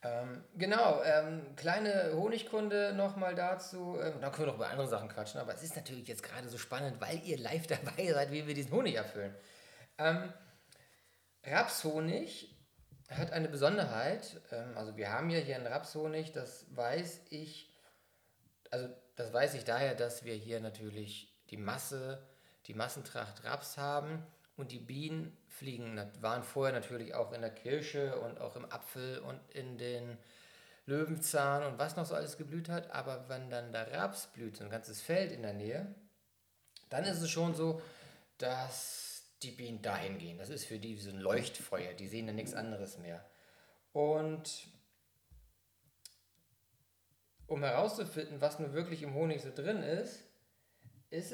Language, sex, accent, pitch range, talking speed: German, male, German, 115-160 Hz, 165 wpm